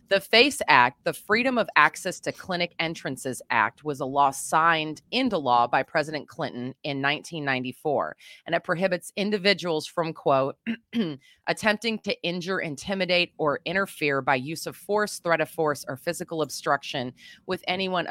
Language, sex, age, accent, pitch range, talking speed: English, female, 30-49, American, 140-180 Hz, 150 wpm